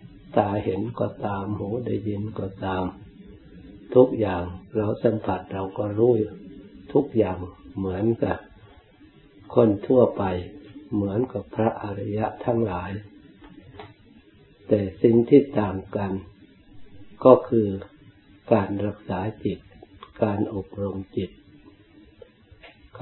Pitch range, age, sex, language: 95-110 Hz, 60-79, male, Thai